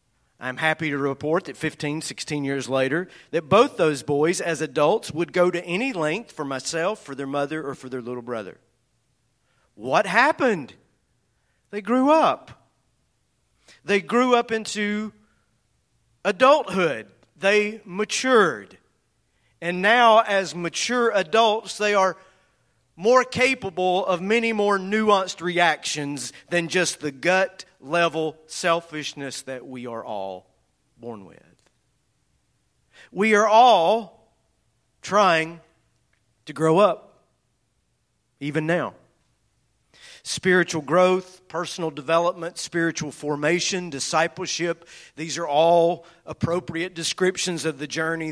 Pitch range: 145-185 Hz